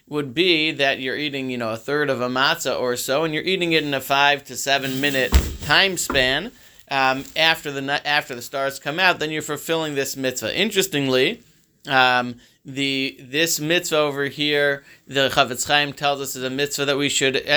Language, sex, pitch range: English, male, 135-165 Hz